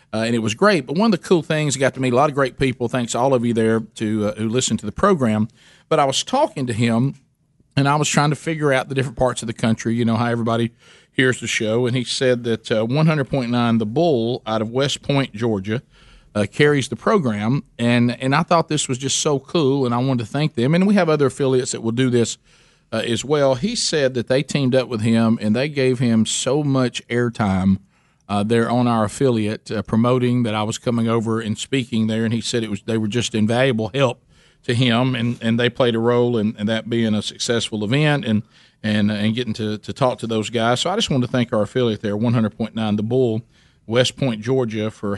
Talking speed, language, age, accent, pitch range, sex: 245 wpm, English, 40-59, American, 110-135 Hz, male